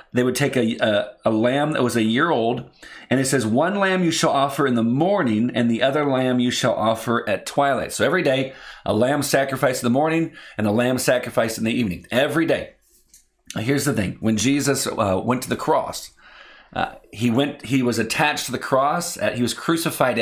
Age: 40-59